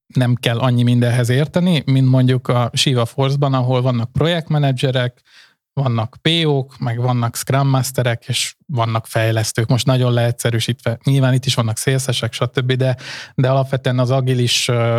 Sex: male